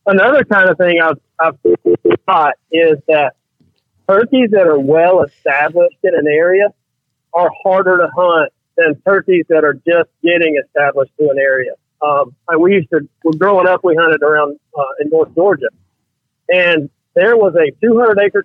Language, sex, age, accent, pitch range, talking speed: English, male, 40-59, American, 145-190 Hz, 175 wpm